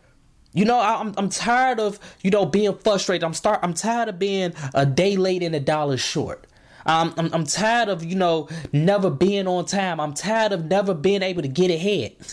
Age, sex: 20-39, male